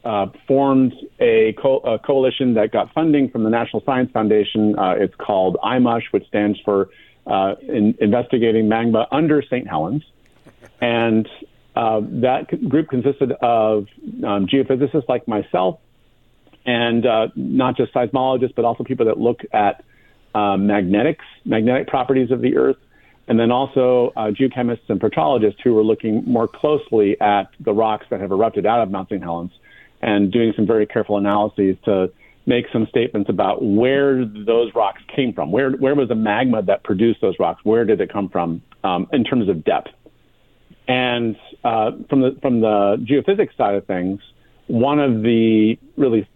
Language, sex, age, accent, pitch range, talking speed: English, male, 50-69, American, 105-130 Hz, 165 wpm